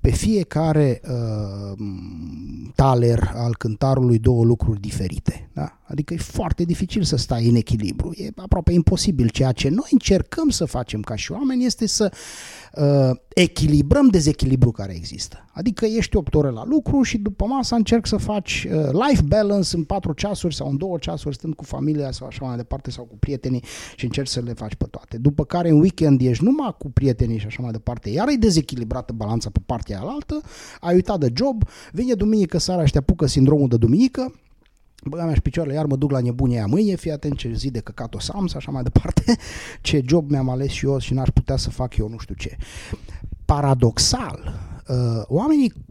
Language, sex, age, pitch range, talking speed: Romanian, male, 30-49, 110-165 Hz, 195 wpm